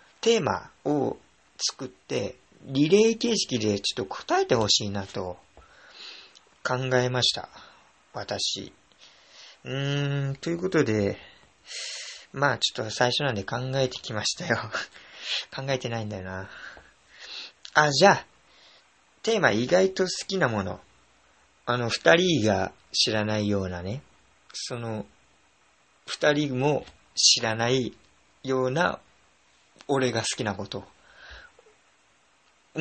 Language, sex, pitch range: Japanese, male, 105-170 Hz